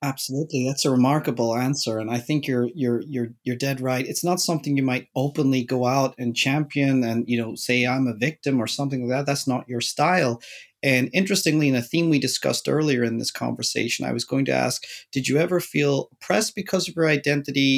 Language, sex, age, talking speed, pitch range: English, male, 30-49, 215 wpm, 130-165 Hz